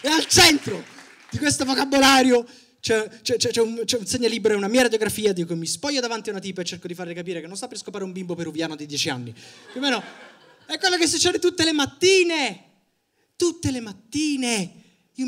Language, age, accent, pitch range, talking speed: Italian, 20-39, native, 155-235 Hz, 210 wpm